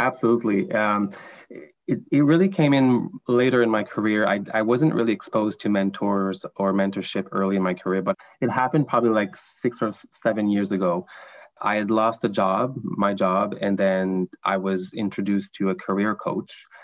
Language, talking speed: English, 180 wpm